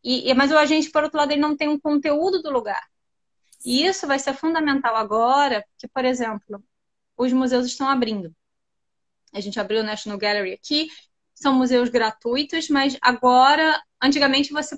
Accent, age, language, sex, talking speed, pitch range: Brazilian, 10-29, Portuguese, female, 160 wpm, 230-275 Hz